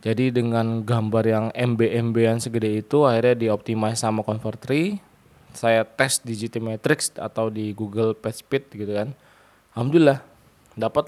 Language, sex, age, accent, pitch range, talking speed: Indonesian, male, 20-39, native, 110-130 Hz, 125 wpm